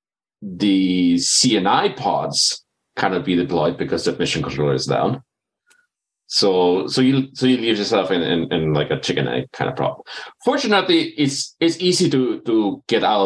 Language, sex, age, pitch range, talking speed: English, male, 30-49, 85-135 Hz, 165 wpm